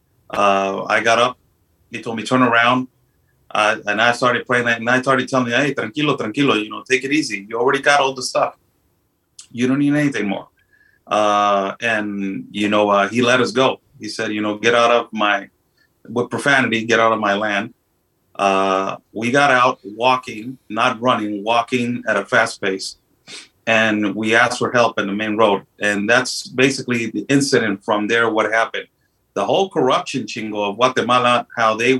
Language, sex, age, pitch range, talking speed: English, male, 30-49, 105-125 Hz, 190 wpm